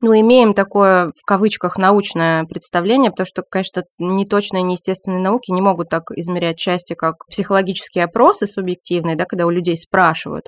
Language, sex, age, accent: Russian, female, 20-39, native